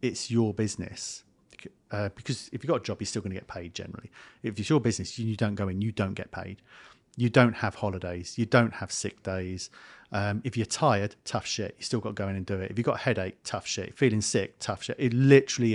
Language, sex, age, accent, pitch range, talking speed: English, male, 40-59, British, 100-120 Hz, 250 wpm